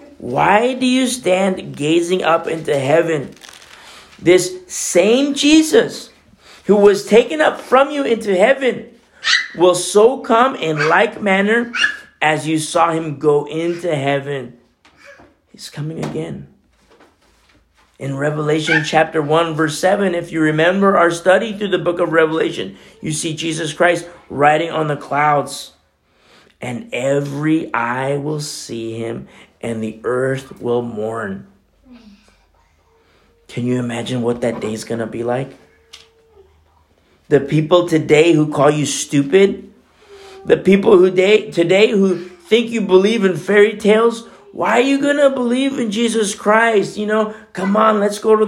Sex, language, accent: male, English, American